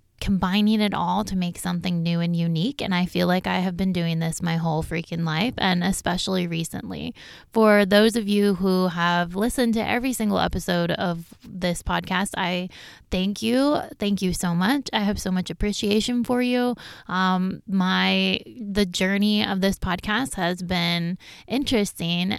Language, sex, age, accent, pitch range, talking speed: English, female, 20-39, American, 175-205 Hz, 170 wpm